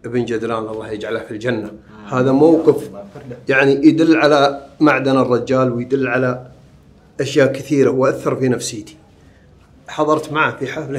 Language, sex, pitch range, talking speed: Arabic, male, 120-140 Hz, 130 wpm